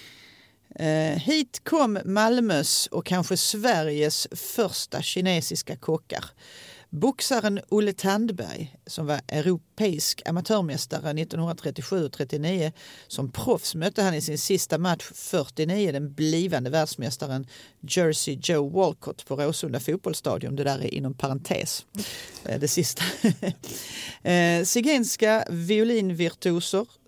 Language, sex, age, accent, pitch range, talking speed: Swedish, female, 40-59, native, 155-195 Hz, 100 wpm